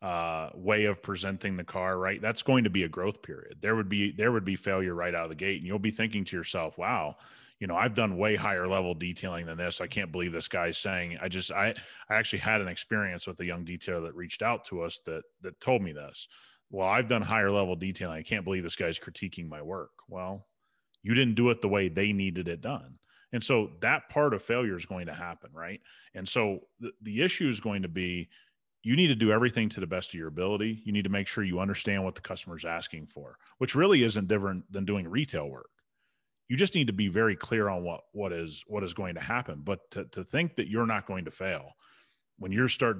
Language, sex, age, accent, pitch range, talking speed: English, male, 30-49, American, 90-110 Hz, 245 wpm